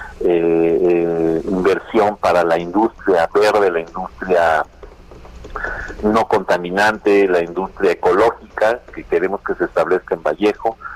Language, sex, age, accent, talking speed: Spanish, male, 50-69, Mexican, 115 wpm